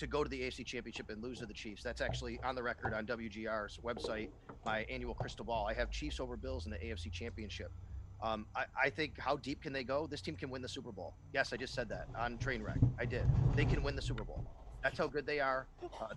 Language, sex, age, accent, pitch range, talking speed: English, male, 30-49, American, 110-140 Hz, 260 wpm